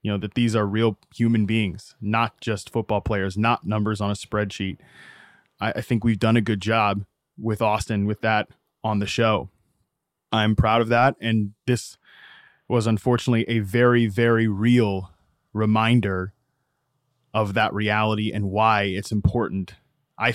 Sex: male